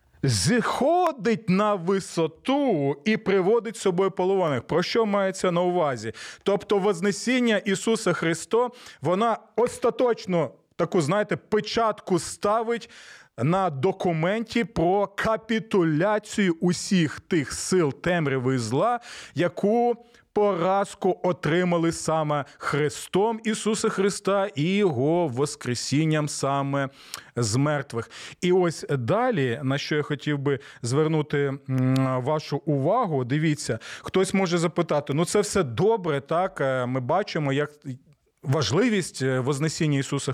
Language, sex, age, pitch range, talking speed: Ukrainian, male, 30-49, 145-200 Hz, 105 wpm